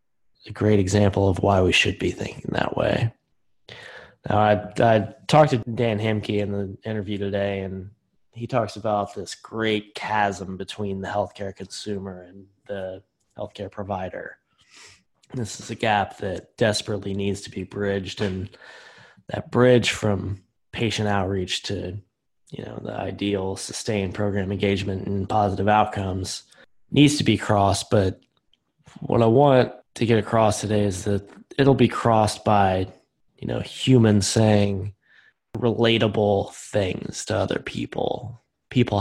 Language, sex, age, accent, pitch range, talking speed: English, male, 20-39, American, 100-110 Hz, 140 wpm